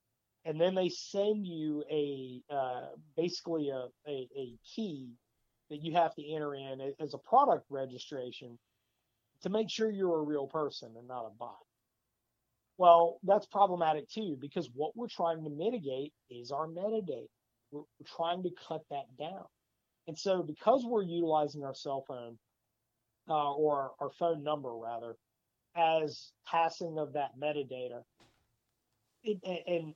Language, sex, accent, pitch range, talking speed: English, male, American, 130-180 Hz, 140 wpm